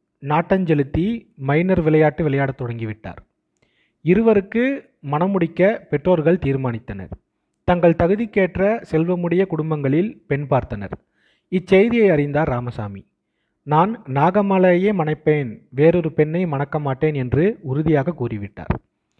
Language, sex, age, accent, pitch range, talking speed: Tamil, male, 30-49, native, 140-180 Hz, 90 wpm